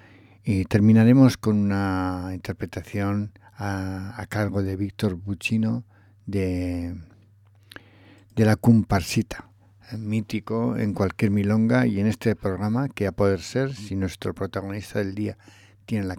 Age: 60-79